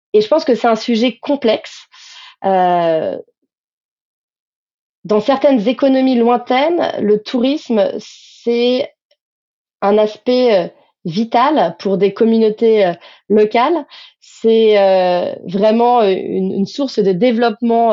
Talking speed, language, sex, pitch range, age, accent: 110 wpm, French, female, 200-255 Hz, 30-49, Belgian